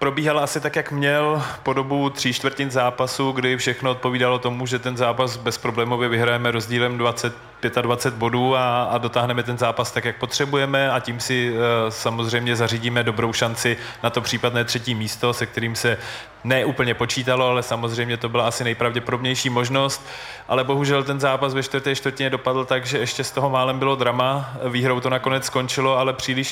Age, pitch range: 20-39, 120-130 Hz